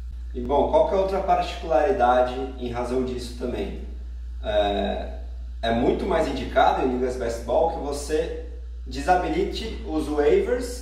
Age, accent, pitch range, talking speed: 20-39, Brazilian, 115-155 Hz, 140 wpm